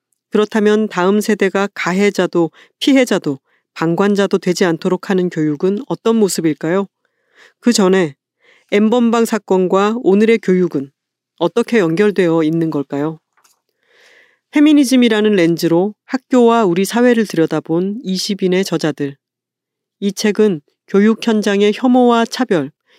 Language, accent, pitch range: Korean, native, 170-220 Hz